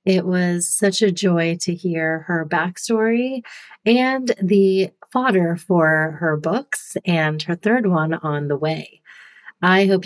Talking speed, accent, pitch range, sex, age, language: 145 wpm, American, 175-210 Hz, female, 40-59, English